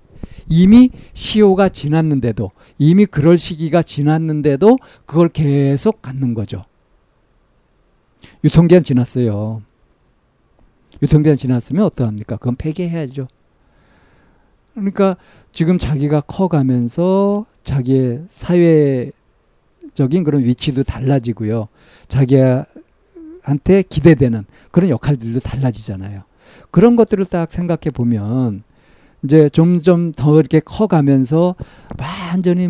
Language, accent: Korean, native